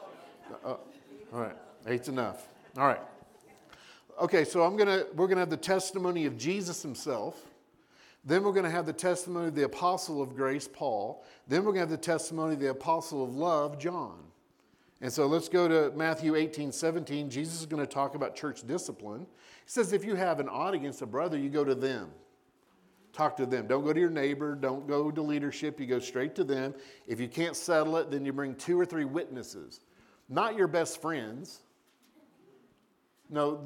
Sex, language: male, English